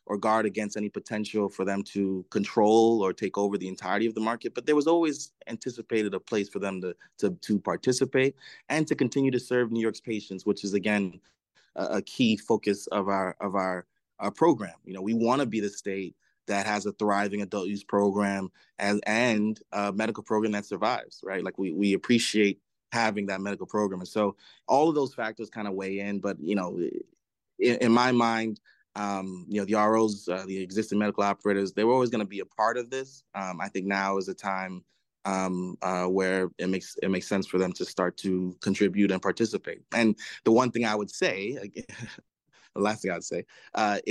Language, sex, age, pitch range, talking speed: English, male, 20-39, 100-115 Hz, 215 wpm